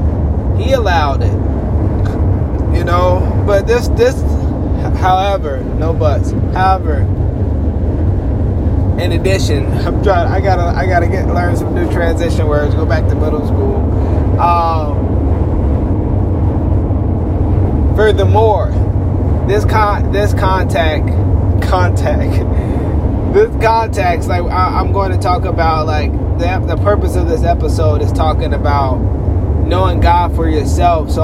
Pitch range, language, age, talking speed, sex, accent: 90-100 Hz, English, 20-39, 115 wpm, male, American